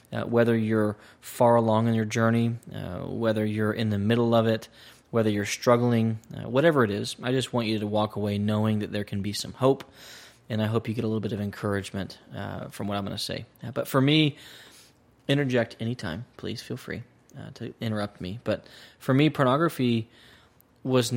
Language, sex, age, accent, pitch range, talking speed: English, male, 20-39, American, 110-125 Hz, 200 wpm